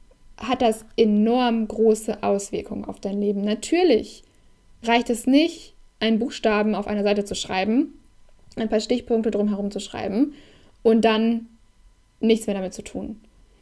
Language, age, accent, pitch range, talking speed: German, 10-29, German, 215-250 Hz, 140 wpm